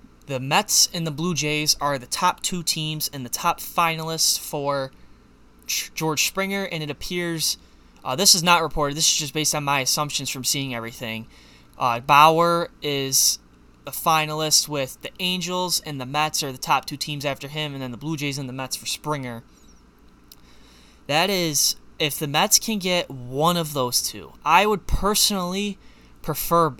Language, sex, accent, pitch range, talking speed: English, male, American, 130-165 Hz, 175 wpm